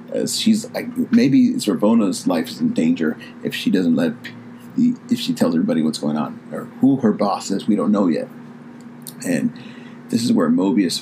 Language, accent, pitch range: English, American, 215-250 Hz